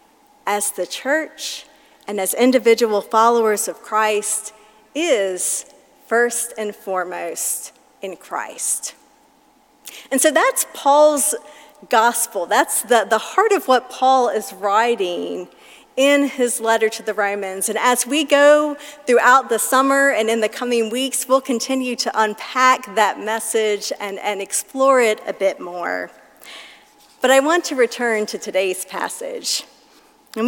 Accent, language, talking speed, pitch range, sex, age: American, English, 135 wpm, 210-275 Hz, female, 40-59